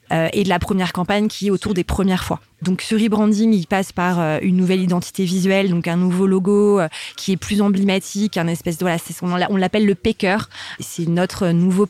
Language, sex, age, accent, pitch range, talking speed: French, female, 20-39, French, 175-205 Hz, 200 wpm